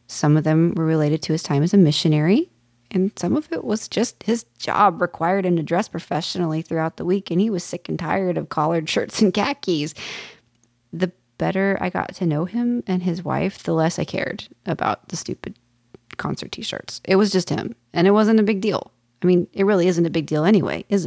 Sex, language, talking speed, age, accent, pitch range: female, English, 220 wpm, 30-49, American, 155-190 Hz